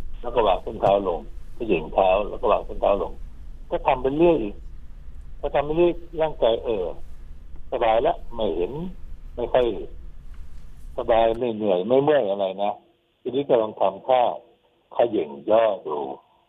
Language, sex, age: Thai, male, 60-79